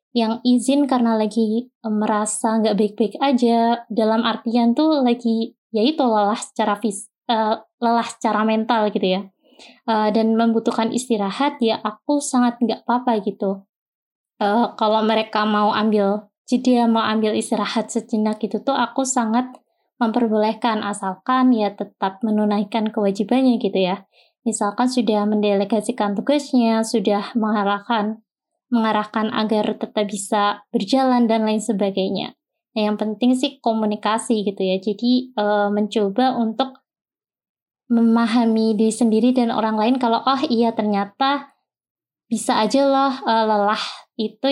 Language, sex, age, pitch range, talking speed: Indonesian, female, 20-39, 210-245 Hz, 130 wpm